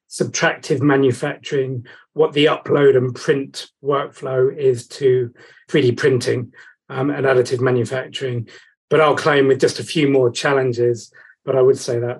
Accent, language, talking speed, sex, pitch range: British, English, 150 wpm, male, 130-155 Hz